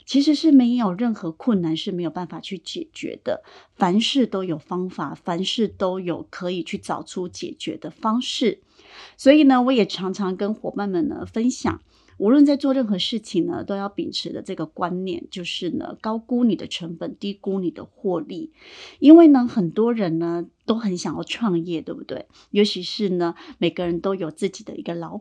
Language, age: Chinese, 30-49